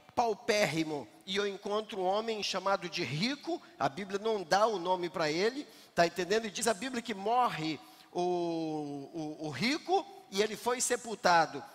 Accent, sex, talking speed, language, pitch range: Brazilian, male, 165 wpm, Portuguese, 180-245 Hz